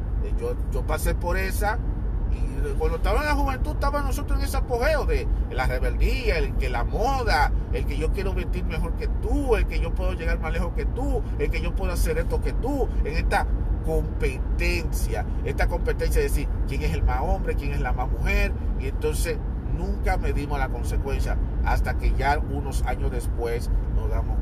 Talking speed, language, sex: 190 wpm, Spanish, male